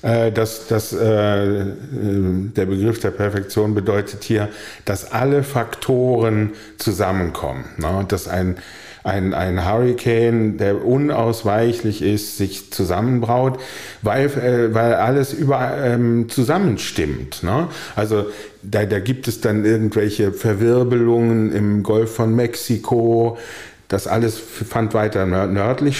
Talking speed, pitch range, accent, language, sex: 110 wpm, 100-125 Hz, German, German, male